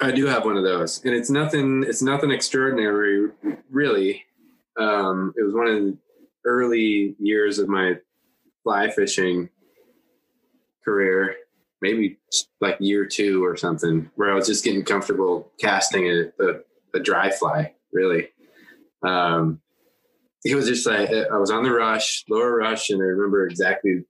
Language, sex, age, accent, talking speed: English, male, 20-39, American, 150 wpm